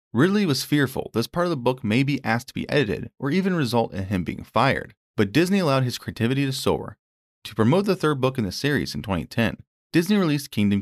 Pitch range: 100-145 Hz